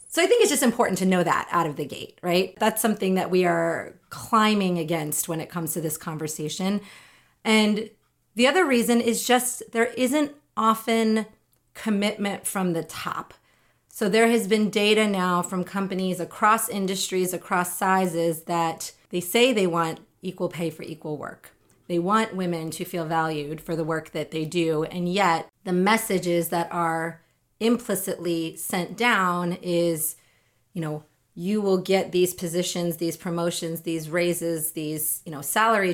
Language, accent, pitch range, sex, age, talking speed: English, American, 165-210 Hz, female, 30-49, 165 wpm